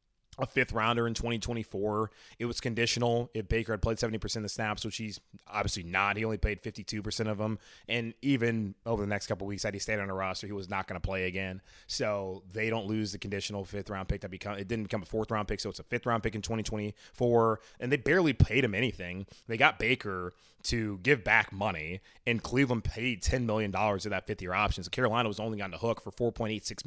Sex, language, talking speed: male, English, 225 wpm